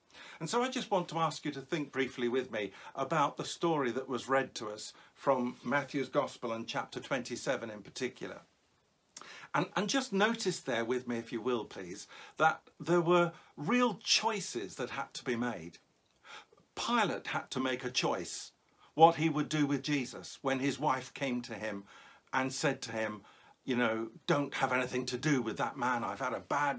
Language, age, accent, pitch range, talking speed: English, 50-69, British, 130-175 Hz, 195 wpm